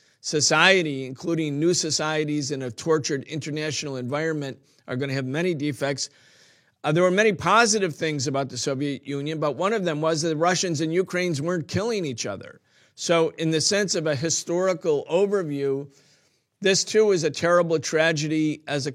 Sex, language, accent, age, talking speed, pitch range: male, English, American, 50-69, 170 wpm, 140-175 Hz